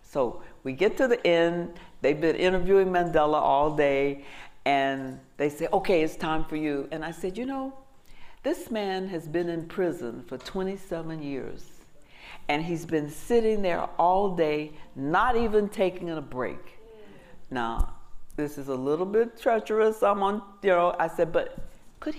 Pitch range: 140-190 Hz